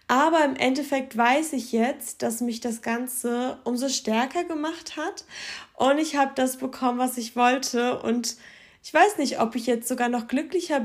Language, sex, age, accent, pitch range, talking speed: German, female, 20-39, German, 245-285 Hz, 175 wpm